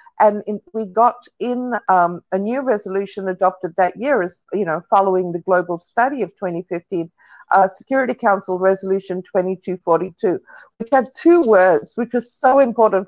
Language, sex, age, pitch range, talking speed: English, female, 50-69, 180-220 Hz, 155 wpm